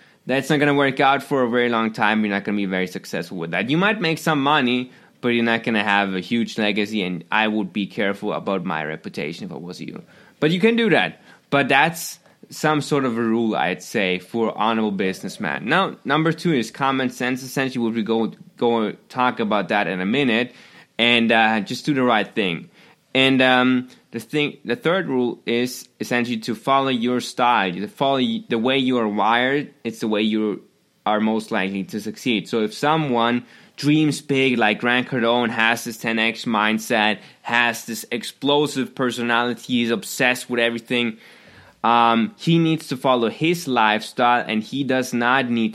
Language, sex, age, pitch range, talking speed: English, male, 20-39, 110-130 Hz, 195 wpm